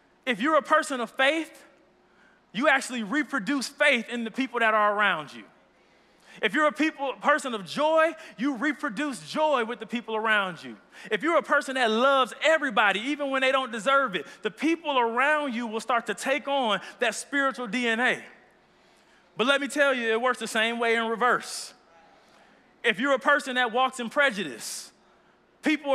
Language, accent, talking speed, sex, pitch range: English, American, 180 wpm, male, 215-275 Hz